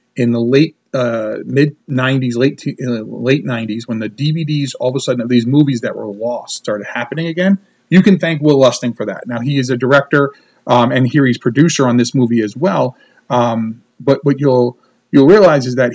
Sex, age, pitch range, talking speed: male, 40-59, 125-155 Hz, 215 wpm